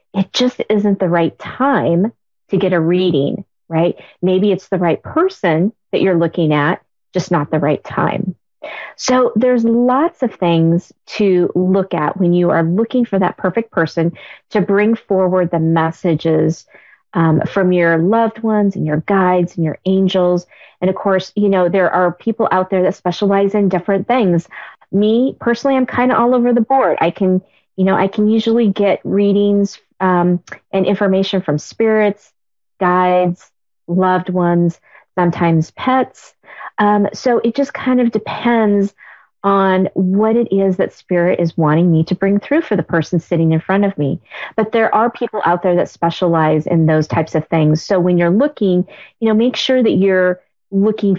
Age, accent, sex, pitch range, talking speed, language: 40-59, American, female, 170-210 Hz, 175 wpm, English